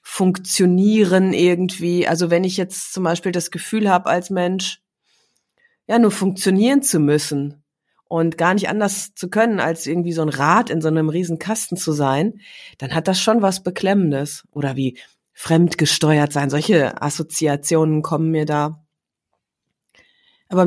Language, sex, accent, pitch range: German, female, German, 150-185 Hz